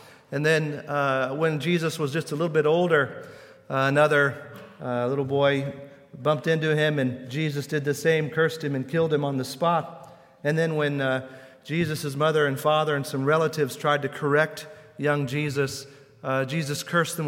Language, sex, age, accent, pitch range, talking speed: English, male, 40-59, American, 135-155 Hz, 180 wpm